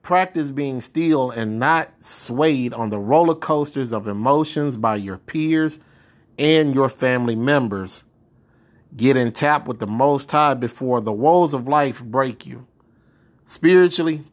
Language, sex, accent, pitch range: English, male, American, 120-150 Hz